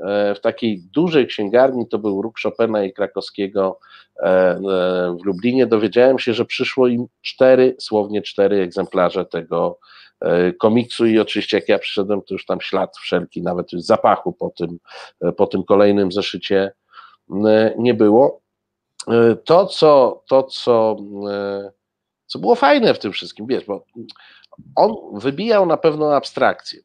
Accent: native